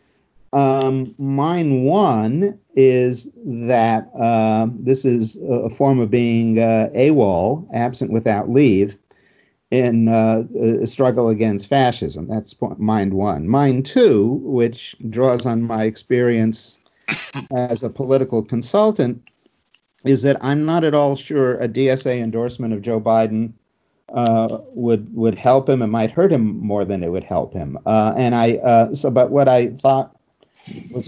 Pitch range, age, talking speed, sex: 110-130 Hz, 50-69, 145 wpm, male